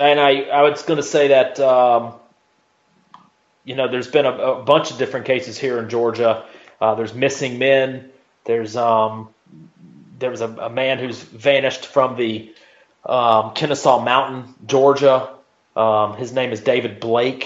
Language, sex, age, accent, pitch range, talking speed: English, male, 30-49, American, 110-130 Hz, 160 wpm